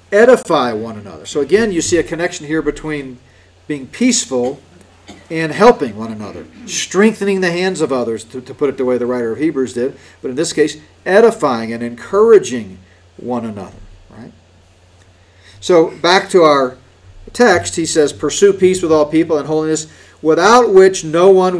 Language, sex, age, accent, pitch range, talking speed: English, male, 50-69, American, 95-160 Hz, 165 wpm